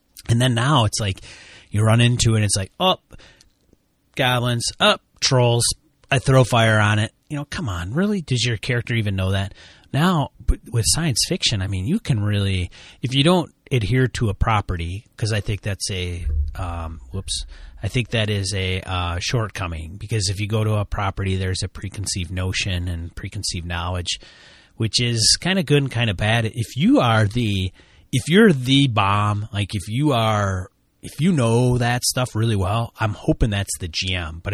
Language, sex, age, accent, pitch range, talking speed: English, male, 30-49, American, 95-115 Hz, 195 wpm